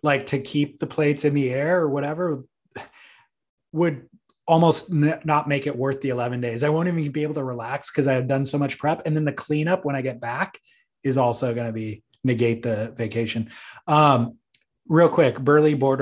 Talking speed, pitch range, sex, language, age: 200 wpm, 125-150 Hz, male, English, 20-39